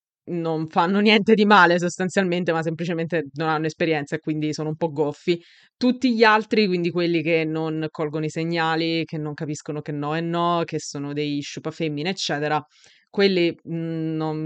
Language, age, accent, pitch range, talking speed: Italian, 20-39, native, 155-180 Hz, 170 wpm